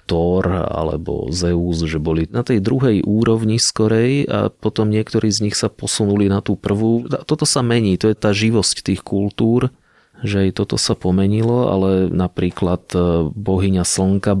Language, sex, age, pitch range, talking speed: Slovak, male, 30-49, 85-105 Hz, 160 wpm